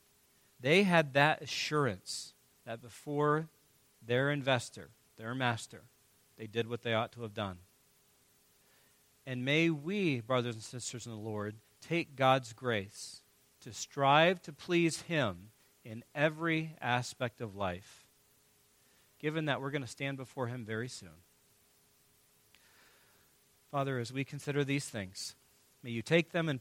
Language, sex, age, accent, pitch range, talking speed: English, male, 40-59, American, 110-140 Hz, 140 wpm